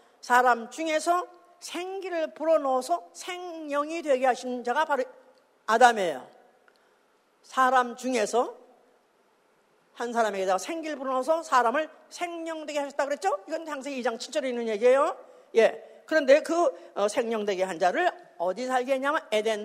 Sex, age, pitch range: female, 50-69, 245-335 Hz